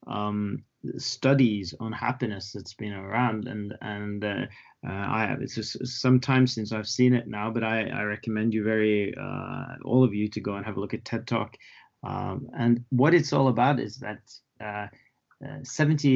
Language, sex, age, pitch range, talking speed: English, male, 20-39, 105-125 Hz, 195 wpm